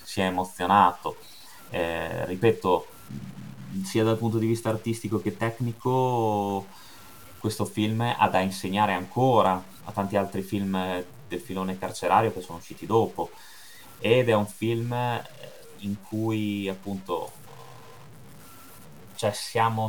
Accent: native